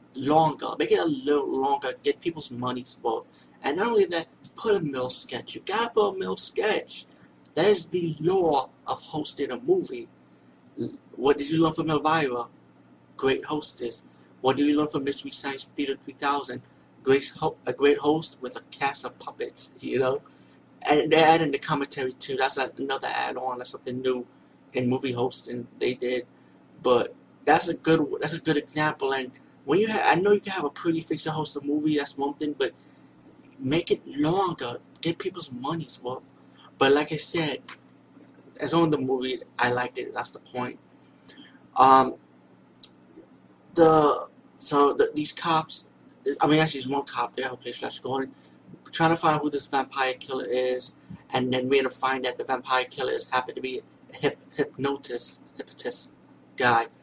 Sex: male